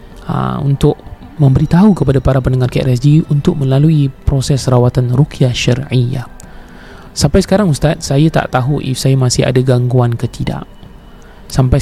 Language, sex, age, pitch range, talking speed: Malay, male, 20-39, 125-155 Hz, 135 wpm